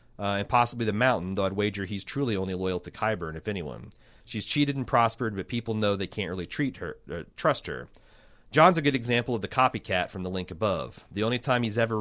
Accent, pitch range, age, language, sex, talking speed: American, 95-120 Hz, 30-49, English, male, 235 wpm